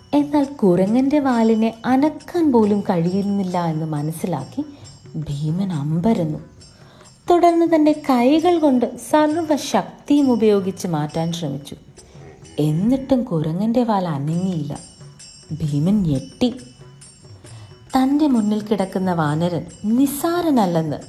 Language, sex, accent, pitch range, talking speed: Malayalam, female, native, 150-215 Hz, 85 wpm